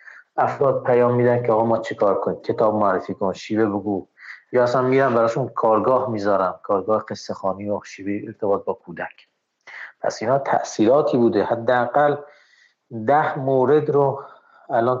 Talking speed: 150 wpm